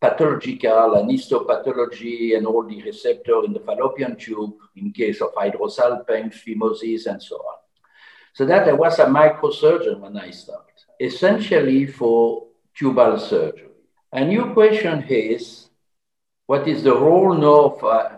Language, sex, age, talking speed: English, male, 60-79, 135 wpm